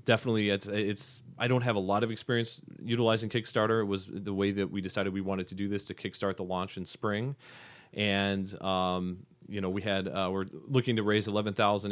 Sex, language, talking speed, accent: male, English, 215 wpm, American